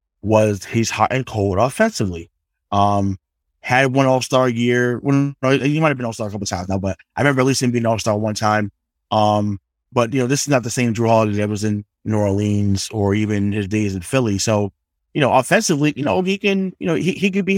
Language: English